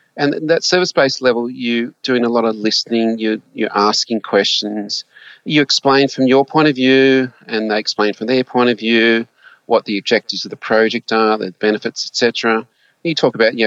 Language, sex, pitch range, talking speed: English, male, 110-135 Hz, 195 wpm